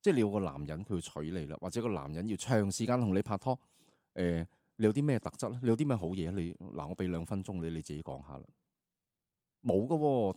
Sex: male